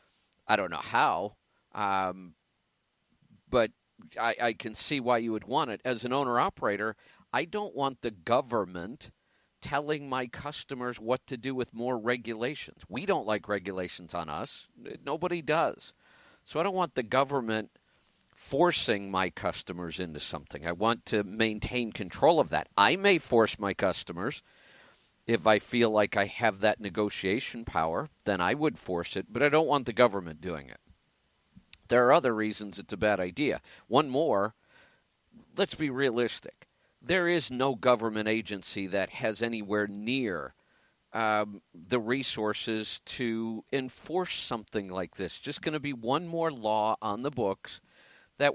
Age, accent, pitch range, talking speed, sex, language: 50-69, American, 105-130 Hz, 155 wpm, male, English